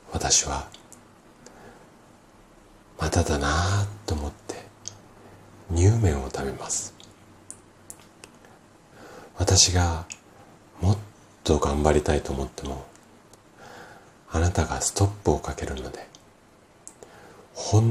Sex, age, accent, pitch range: male, 40-59, native, 80-100 Hz